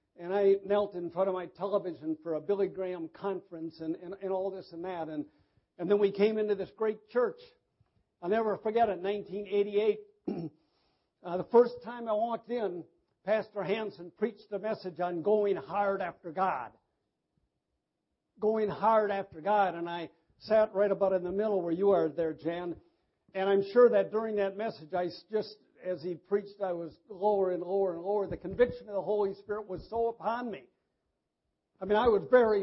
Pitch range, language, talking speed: 180-220 Hz, English, 190 wpm